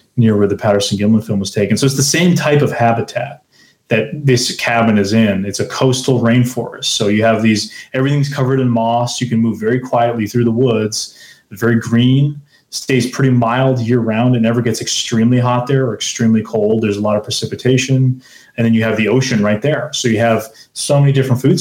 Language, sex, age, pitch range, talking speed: English, male, 30-49, 110-130 Hz, 215 wpm